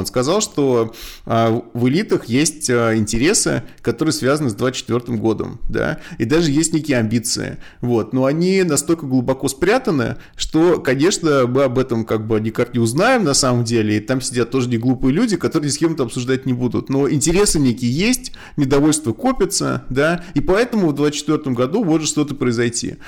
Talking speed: 170 wpm